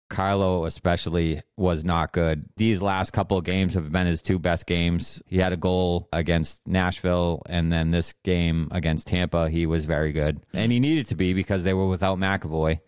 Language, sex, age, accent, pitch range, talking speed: English, male, 30-49, American, 80-95 Hz, 195 wpm